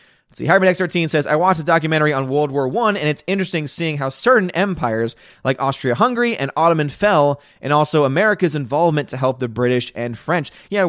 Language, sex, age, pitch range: English, male, 30-49, 135-180 Hz